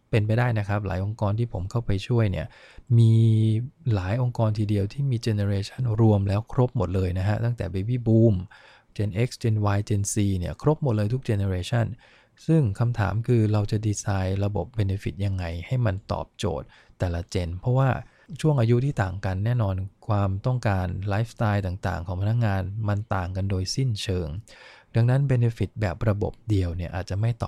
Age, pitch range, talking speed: 20-39, 95-115 Hz, 30 wpm